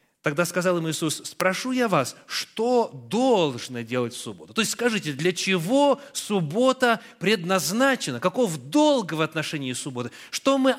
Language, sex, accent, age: Russian, male, native, 30-49